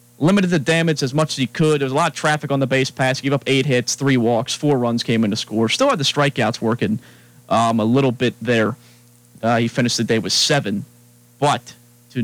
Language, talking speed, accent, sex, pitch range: English, 245 wpm, American, male, 120-140 Hz